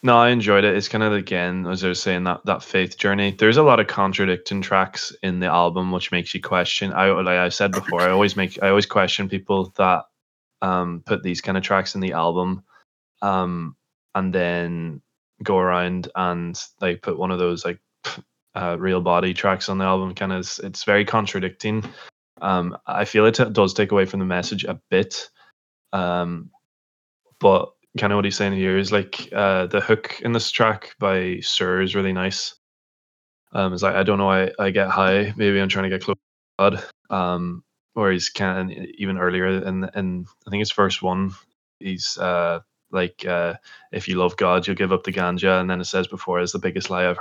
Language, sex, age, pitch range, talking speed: English, male, 20-39, 90-100 Hz, 210 wpm